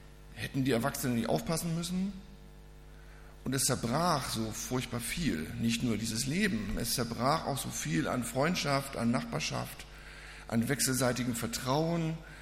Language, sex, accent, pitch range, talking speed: German, male, German, 115-140 Hz, 135 wpm